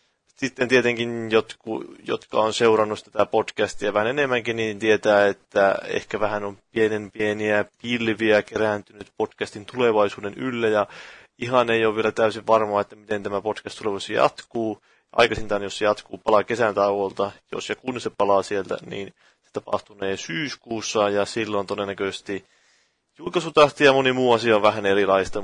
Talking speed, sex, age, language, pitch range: 150 wpm, male, 30-49, Finnish, 100-110 Hz